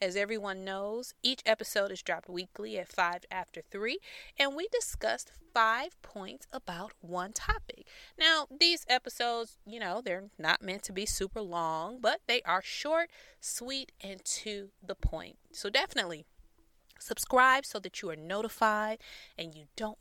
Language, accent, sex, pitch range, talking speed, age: English, American, female, 180-245 Hz, 155 wpm, 30-49